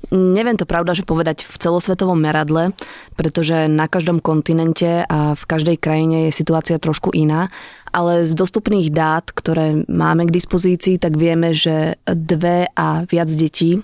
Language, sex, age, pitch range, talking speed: Slovak, female, 20-39, 160-175 Hz, 150 wpm